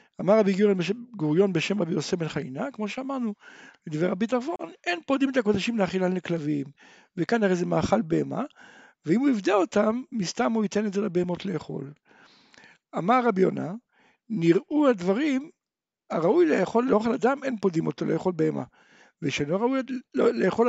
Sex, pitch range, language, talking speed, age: male, 175-235 Hz, Hebrew, 150 wpm, 60-79